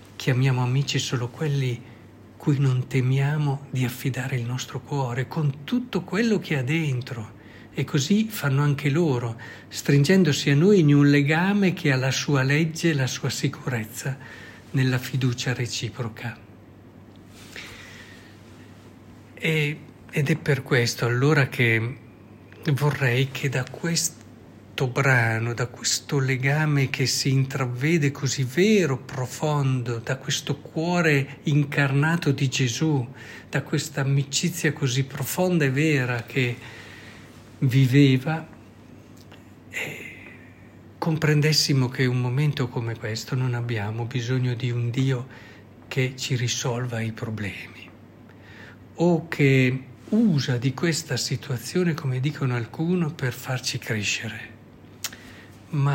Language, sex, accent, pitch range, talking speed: Italian, male, native, 115-145 Hz, 115 wpm